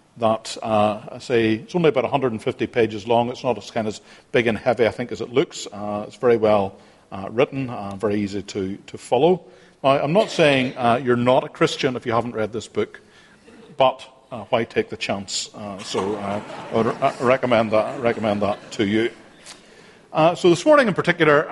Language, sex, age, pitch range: English, male, 50-69, 115-150 Hz